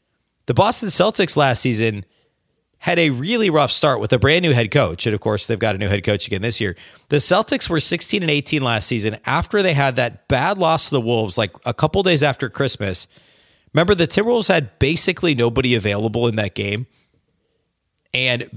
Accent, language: American, English